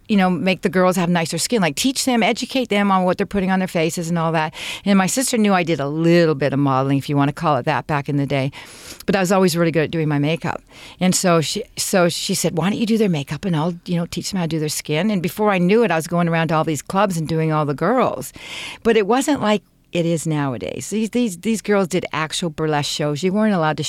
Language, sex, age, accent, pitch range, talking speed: English, female, 50-69, American, 155-195 Hz, 285 wpm